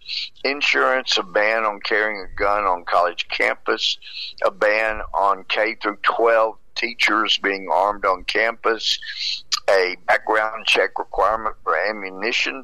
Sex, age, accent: male, 50-69, American